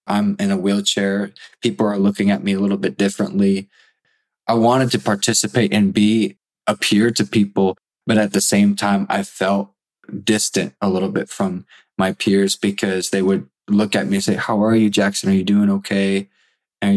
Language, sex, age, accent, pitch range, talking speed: English, male, 20-39, American, 95-105 Hz, 190 wpm